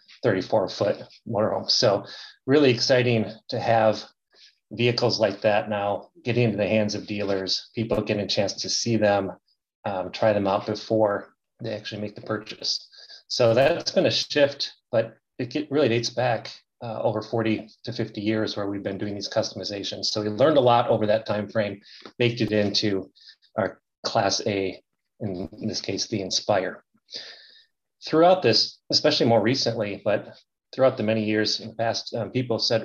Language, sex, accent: English, male, American